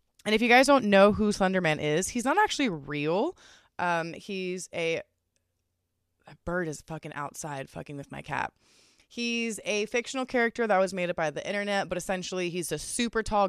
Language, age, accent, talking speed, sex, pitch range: English, 20-39, American, 185 wpm, female, 145-225 Hz